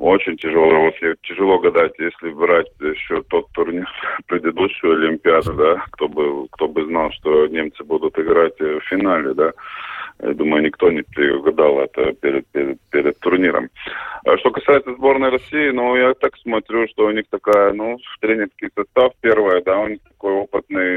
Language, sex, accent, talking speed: Russian, male, native, 165 wpm